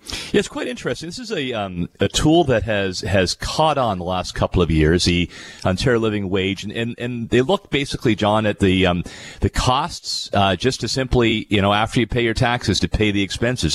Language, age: English, 40-59